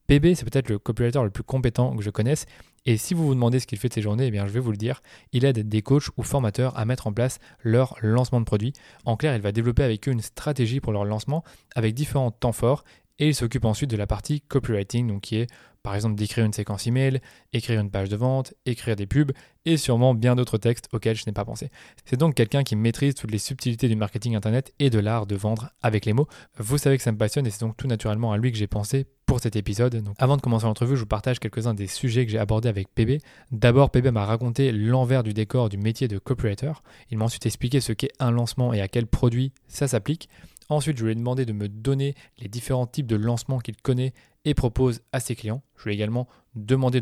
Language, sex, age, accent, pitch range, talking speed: French, male, 20-39, French, 110-130 Hz, 255 wpm